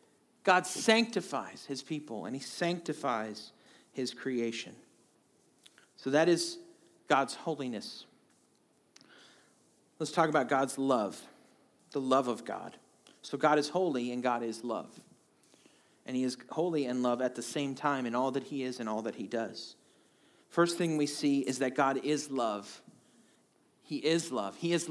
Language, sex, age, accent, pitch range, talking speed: English, male, 40-59, American, 130-165 Hz, 155 wpm